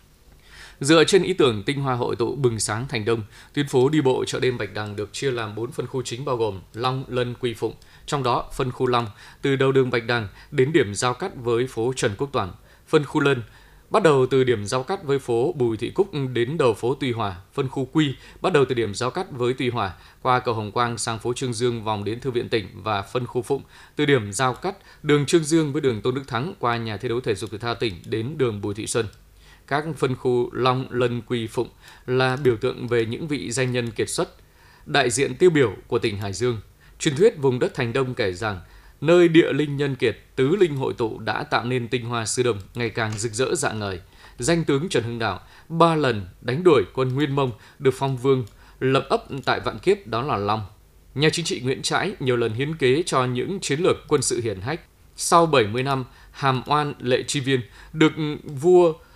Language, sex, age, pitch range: Vietnamese, male, 20-39, 115-140 Hz